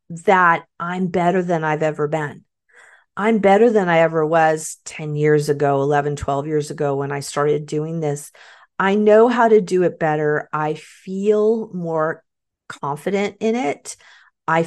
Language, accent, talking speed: English, American, 160 wpm